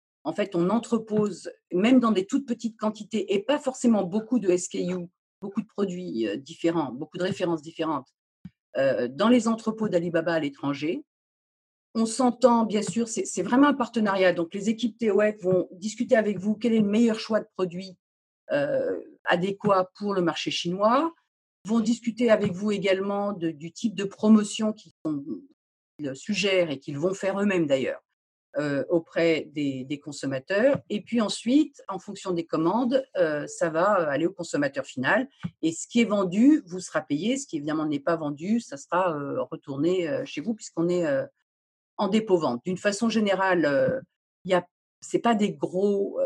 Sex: female